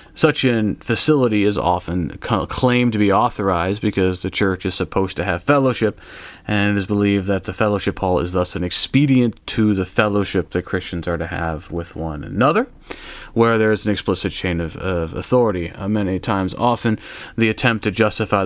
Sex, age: male, 30-49